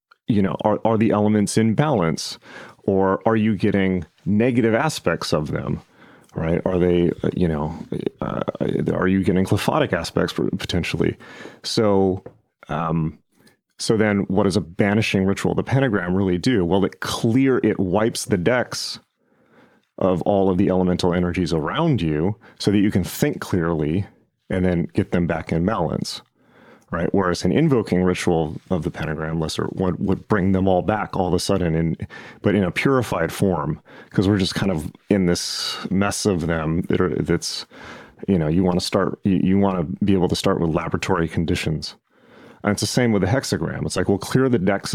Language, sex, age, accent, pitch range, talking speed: English, male, 30-49, American, 90-105 Hz, 185 wpm